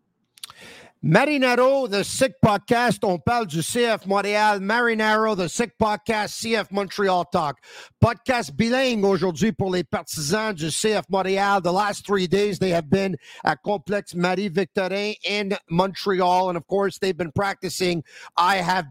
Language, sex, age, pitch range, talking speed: French, male, 50-69, 180-220 Hz, 145 wpm